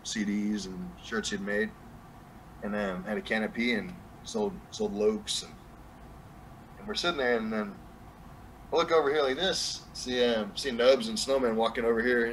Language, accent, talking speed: English, American, 180 wpm